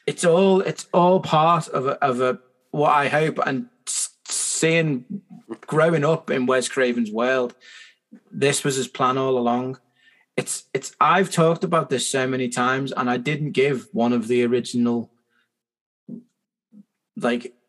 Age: 30-49